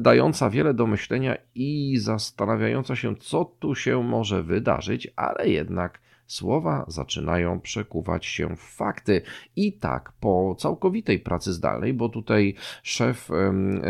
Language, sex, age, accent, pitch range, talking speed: Polish, male, 40-59, native, 90-115 Hz, 125 wpm